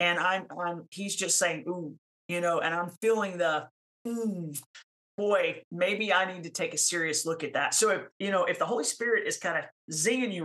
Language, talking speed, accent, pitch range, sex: English, 220 wpm, American, 175-220 Hz, male